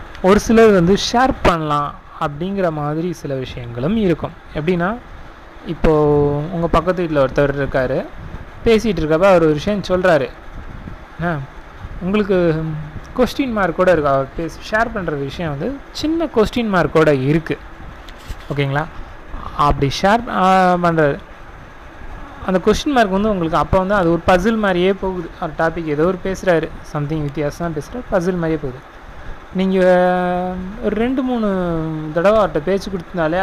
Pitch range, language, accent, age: 145-190 Hz, Tamil, native, 30-49